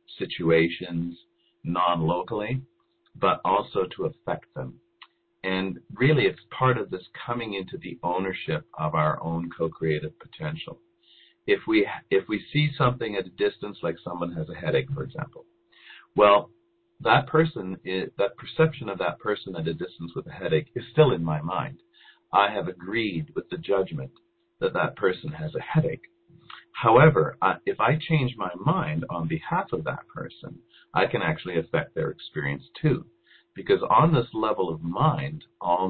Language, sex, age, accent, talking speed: English, male, 50-69, American, 160 wpm